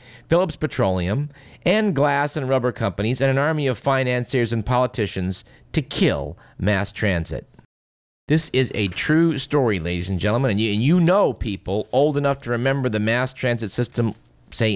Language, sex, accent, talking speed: English, male, American, 165 wpm